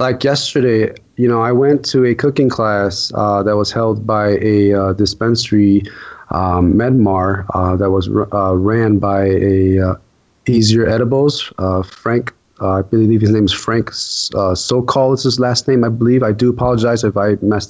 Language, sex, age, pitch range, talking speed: English, male, 20-39, 110-135 Hz, 185 wpm